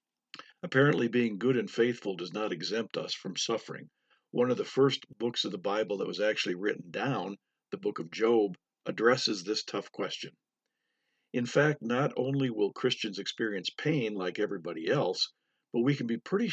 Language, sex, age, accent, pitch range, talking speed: English, male, 50-69, American, 105-140 Hz, 175 wpm